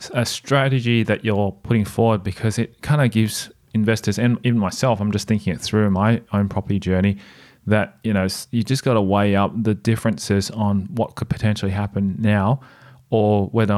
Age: 30-49